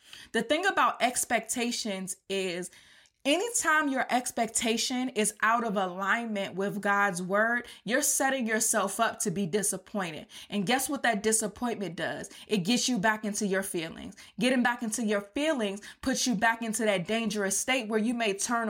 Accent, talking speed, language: American, 165 wpm, English